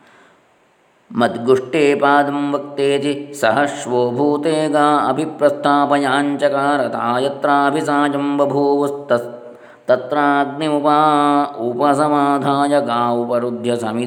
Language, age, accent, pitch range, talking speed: Kannada, 20-39, native, 115-145 Hz, 55 wpm